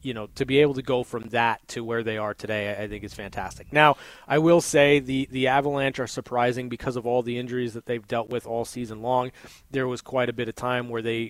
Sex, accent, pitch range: male, American, 115-135 Hz